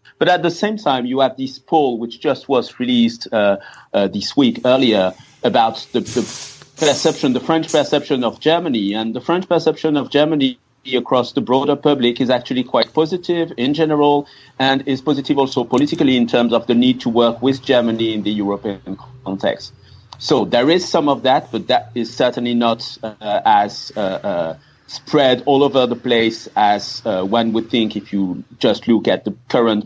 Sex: male